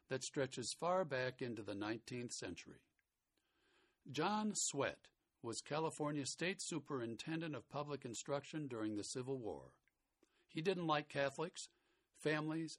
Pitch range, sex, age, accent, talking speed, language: 130-160 Hz, male, 60-79, American, 120 wpm, English